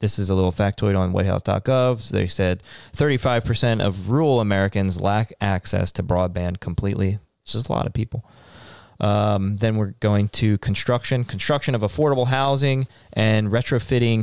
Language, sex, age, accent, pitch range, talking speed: English, male, 20-39, American, 100-120 Hz, 150 wpm